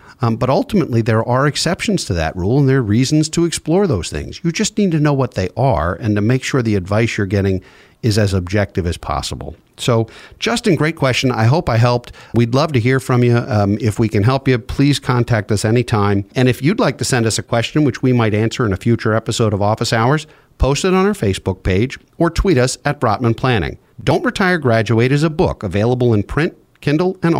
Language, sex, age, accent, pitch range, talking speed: English, male, 50-69, American, 110-145 Hz, 230 wpm